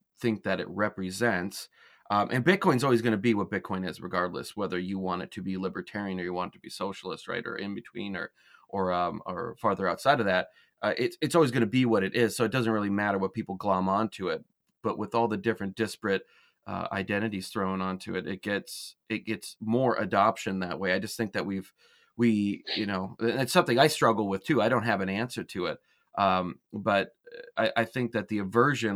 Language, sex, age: English, male, 30-49